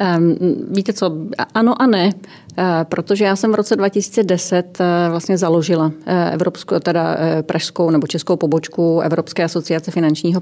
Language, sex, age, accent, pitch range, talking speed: Czech, female, 30-49, native, 165-185 Hz, 125 wpm